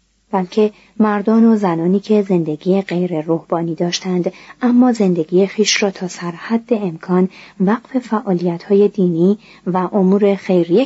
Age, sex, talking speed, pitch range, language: 30-49, female, 125 wpm, 175-235 Hz, Persian